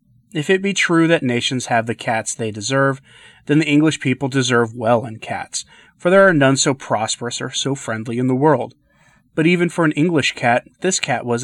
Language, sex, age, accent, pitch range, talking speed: English, male, 30-49, American, 115-145 Hz, 210 wpm